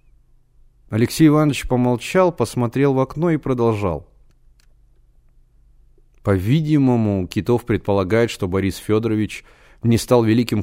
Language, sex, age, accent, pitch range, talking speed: Russian, male, 30-49, native, 105-130 Hz, 95 wpm